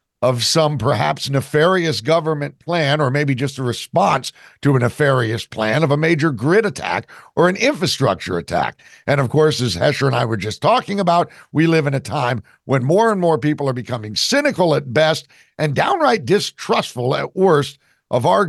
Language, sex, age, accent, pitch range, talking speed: English, male, 60-79, American, 135-185 Hz, 185 wpm